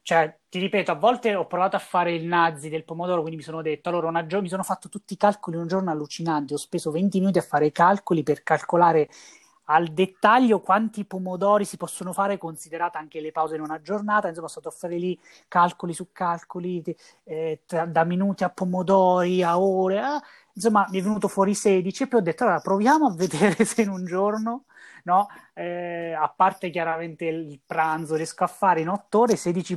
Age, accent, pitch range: 20-39, native, 160-200 Hz